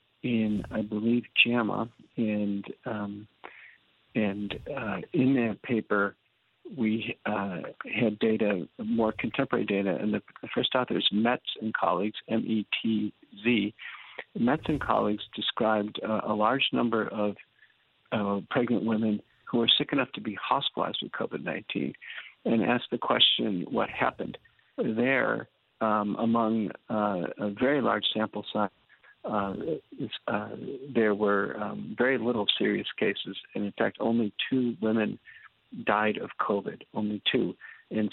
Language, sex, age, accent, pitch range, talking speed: English, male, 50-69, American, 105-120 Hz, 130 wpm